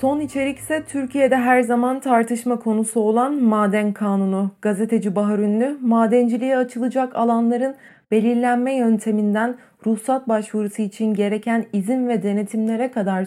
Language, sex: Turkish, female